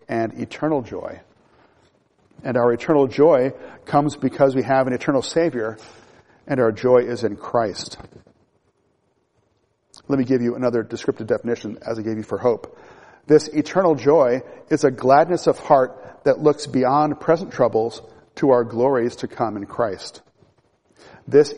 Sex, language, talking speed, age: male, English, 150 wpm, 40-59